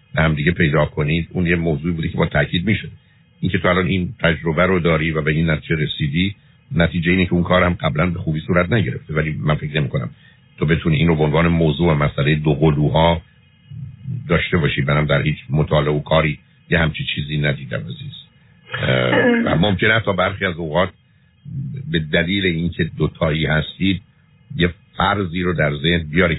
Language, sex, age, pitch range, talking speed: Persian, male, 60-79, 75-95 Hz, 175 wpm